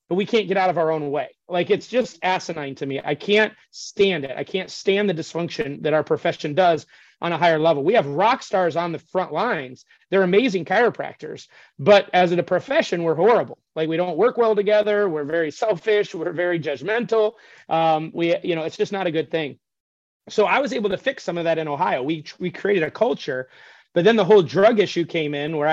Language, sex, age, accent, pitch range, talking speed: English, male, 30-49, American, 155-190 Hz, 225 wpm